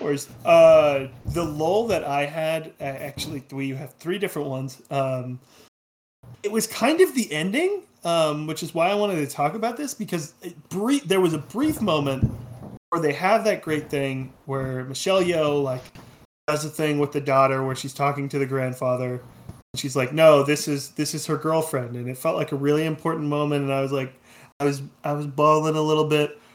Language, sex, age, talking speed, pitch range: English, male, 30-49, 205 wpm, 140-190 Hz